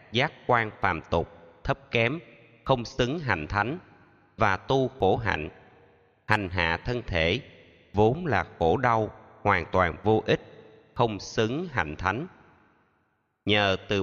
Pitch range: 90-120 Hz